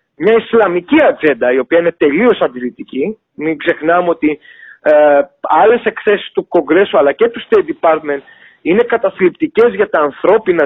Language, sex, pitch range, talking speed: Greek, male, 155-220 Hz, 140 wpm